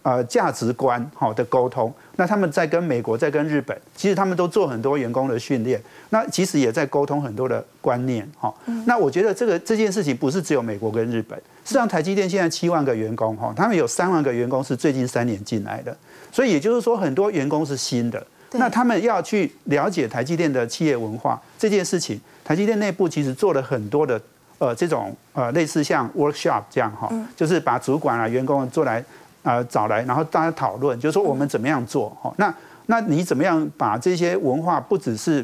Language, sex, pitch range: Chinese, male, 130-190 Hz